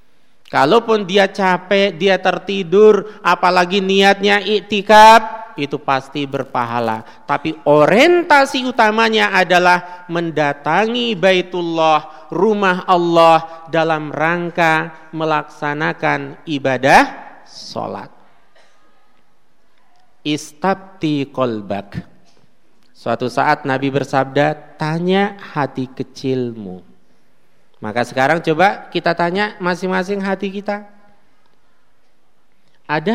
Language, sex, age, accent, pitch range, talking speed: Indonesian, male, 40-59, native, 145-195 Hz, 75 wpm